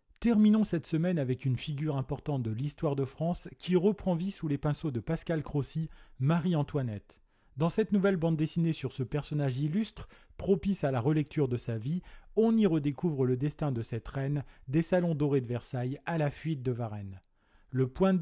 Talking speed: 190 wpm